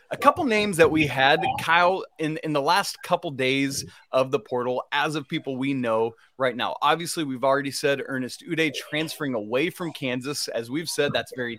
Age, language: 30-49, English